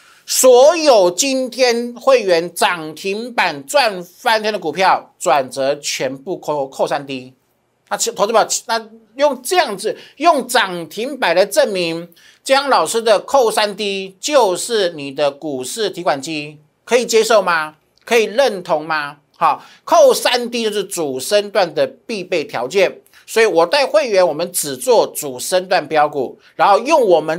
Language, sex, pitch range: Chinese, male, 165-250 Hz